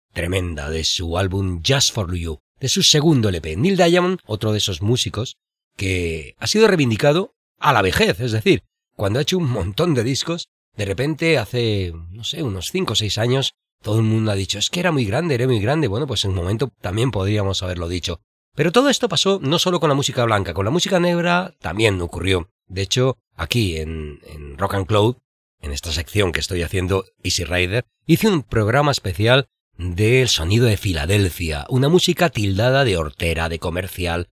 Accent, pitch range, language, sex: Spanish, 90-130 Hz, Spanish, male